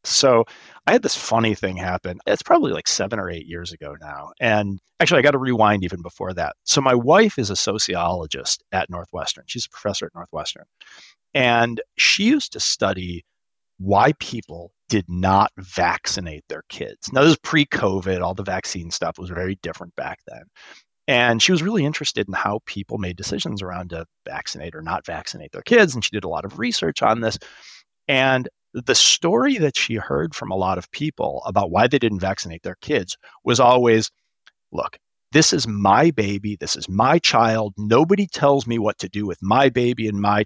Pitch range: 95-130 Hz